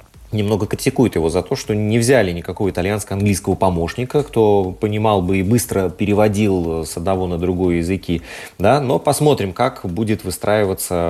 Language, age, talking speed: Russian, 30-49, 150 wpm